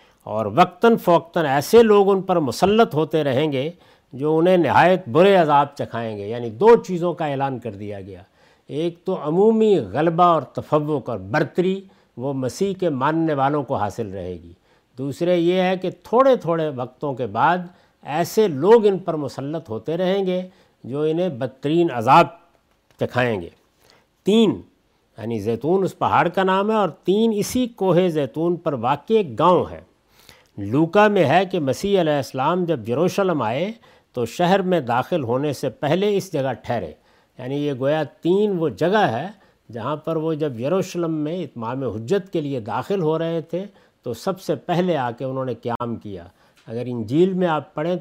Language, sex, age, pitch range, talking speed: Urdu, male, 50-69, 130-180 Hz, 175 wpm